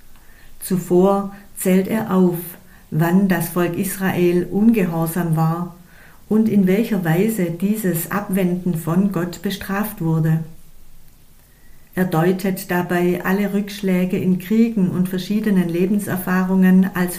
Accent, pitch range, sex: German, 175-205 Hz, female